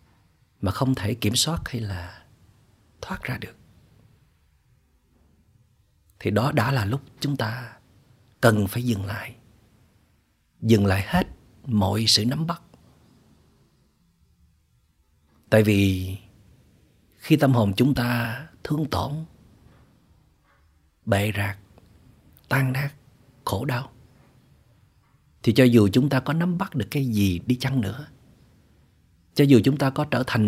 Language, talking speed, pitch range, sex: Vietnamese, 125 wpm, 95-130 Hz, male